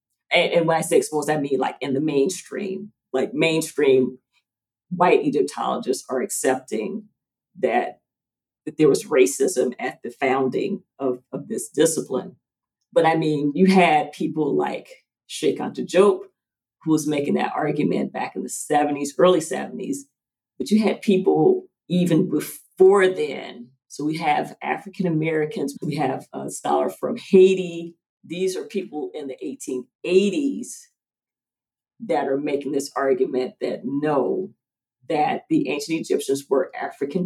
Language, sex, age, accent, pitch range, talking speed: English, female, 40-59, American, 135-200 Hz, 140 wpm